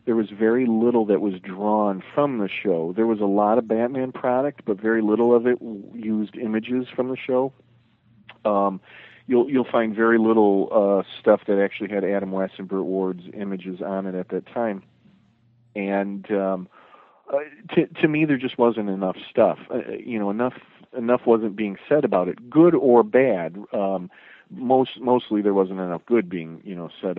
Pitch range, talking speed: 95-120 Hz, 180 wpm